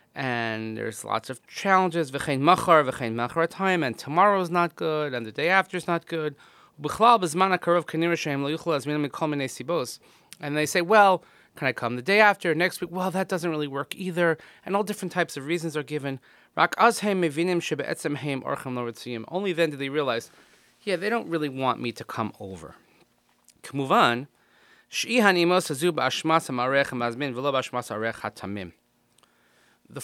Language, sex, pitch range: English, male, 125-175 Hz